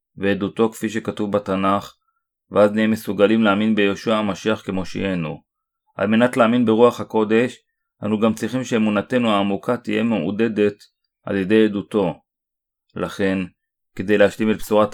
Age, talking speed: 30-49, 125 wpm